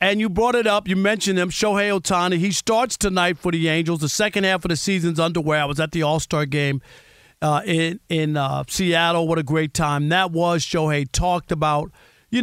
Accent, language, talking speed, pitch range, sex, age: American, English, 210 wpm, 150-180 Hz, male, 50-69